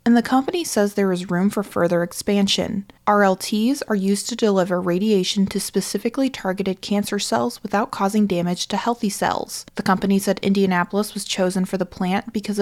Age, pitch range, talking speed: 20-39, 185-215 Hz, 175 wpm